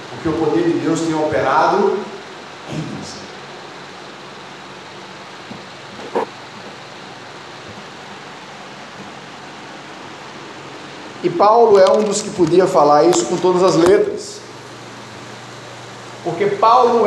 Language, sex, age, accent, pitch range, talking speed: Portuguese, male, 40-59, Brazilian, 190-265 Hz, 85 wpm